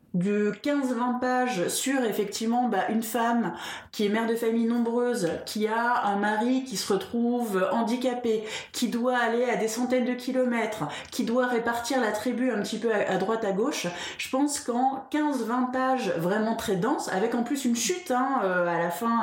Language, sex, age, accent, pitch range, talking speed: French, female, 20-39, French, 215-260 Hz, 185 wpm